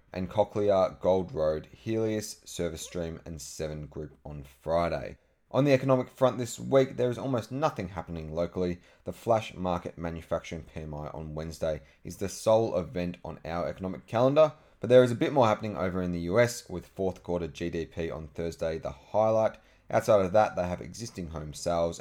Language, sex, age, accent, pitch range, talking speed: English, male, 30-49, Australian, 85-100 Hz, 180 wpm